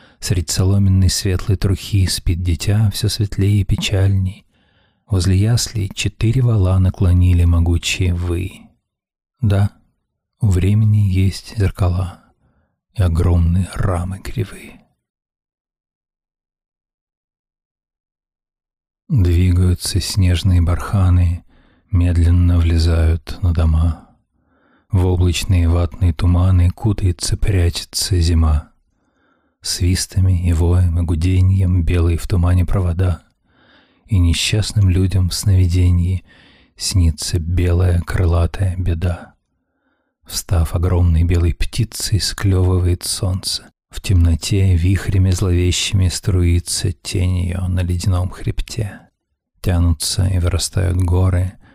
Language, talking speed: Russian, 90 wpm